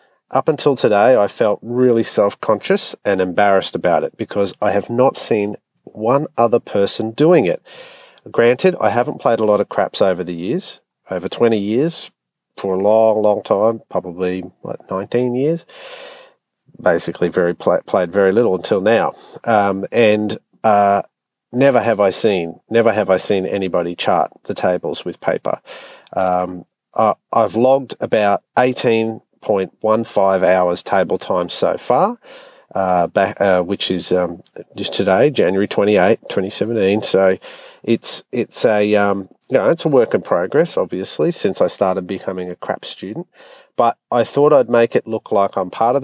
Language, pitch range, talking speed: English, 95-120 Hz, 160 wpm